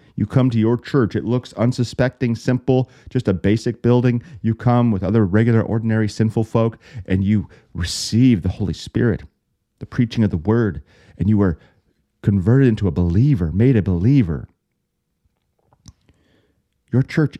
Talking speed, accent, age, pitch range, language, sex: 150 wpm, American, 40-59, 95-120 Hz, English, male